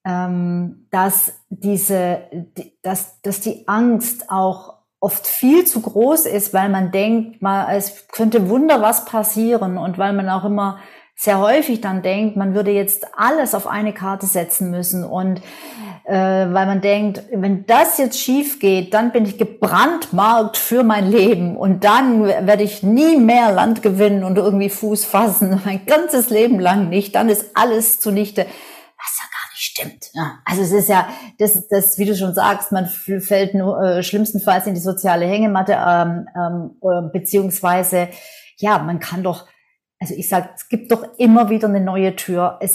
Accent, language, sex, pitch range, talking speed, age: German, German, female, 190-220 Hz, 165 wpm, 40-59